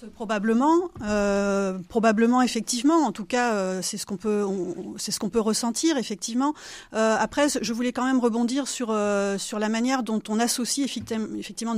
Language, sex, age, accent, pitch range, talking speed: French, female, 30-49, French, 210-260 Hz, 185 wpm